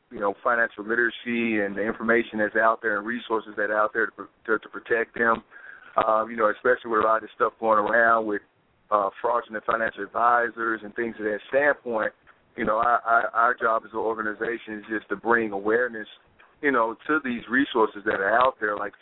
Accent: American